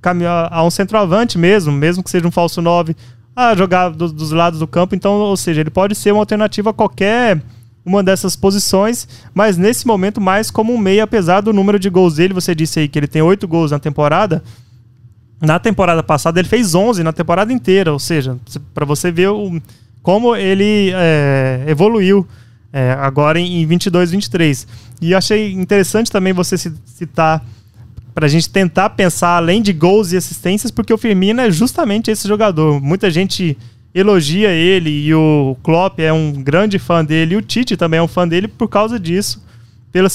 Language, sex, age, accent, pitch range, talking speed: Portuguese, male, 20-39, Brazilian, 155-195 Hz, 180 wpm